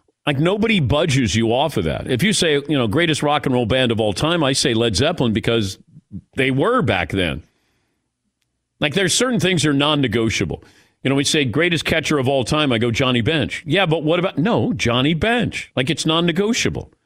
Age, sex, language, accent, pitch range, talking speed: 50-69, male, English, American, 125-165 Hz, 210 wpm